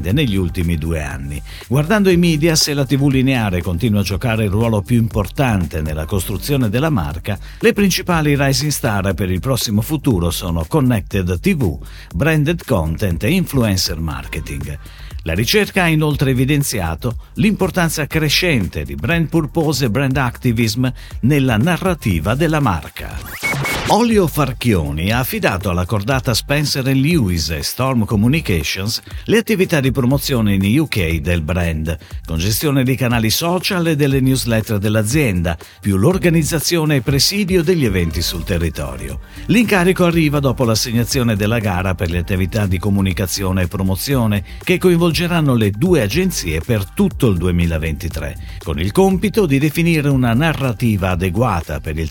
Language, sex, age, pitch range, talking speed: Italian, male, 50-69, 90-150 Hz, 140 wpm